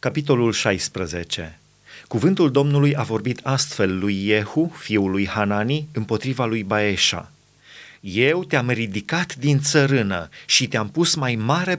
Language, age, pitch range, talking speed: Romanian, 30-49, 110-155 Hz, 125 wpm